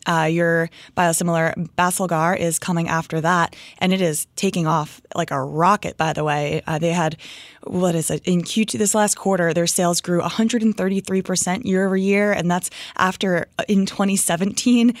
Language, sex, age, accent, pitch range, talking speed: English, female, 20-39, American, 170-210 Hz, 170 wpm